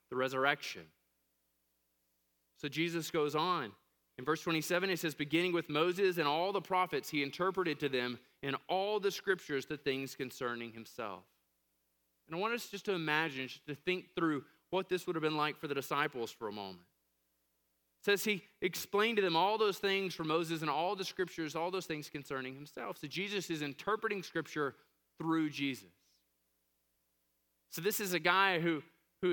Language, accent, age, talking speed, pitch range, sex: English, American, 20-39, 180 wpm, 120-185 Hz, male